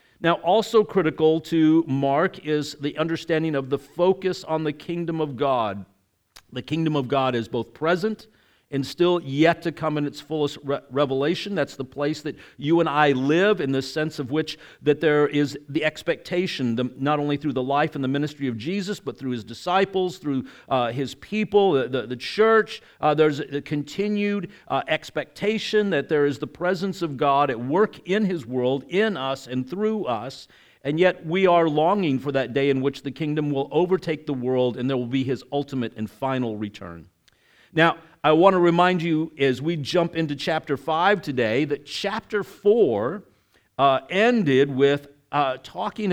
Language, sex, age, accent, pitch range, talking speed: English, male, 50-69, American, 135-170 Hz, 185 wpm